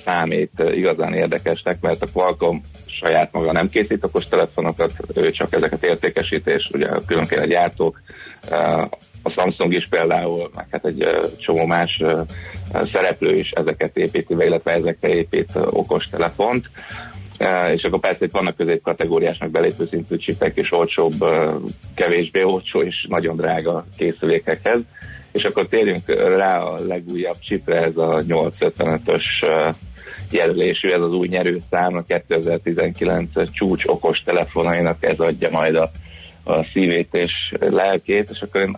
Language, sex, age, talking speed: Hungarian, male, 30-49, 135 wpm